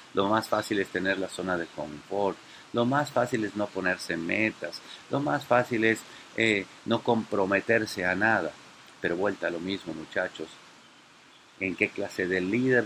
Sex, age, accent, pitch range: male, 50-69, Mexican, 95-110 Hz